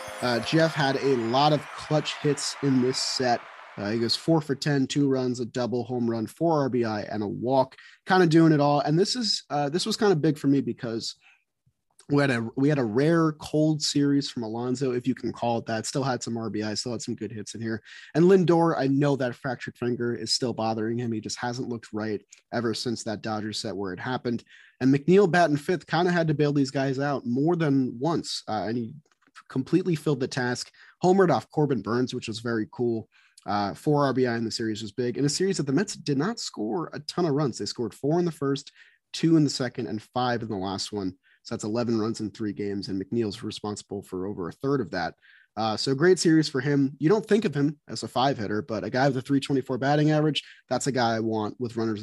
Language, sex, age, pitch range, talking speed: English, male, 30-49, 115-150 Hz, 245 wpm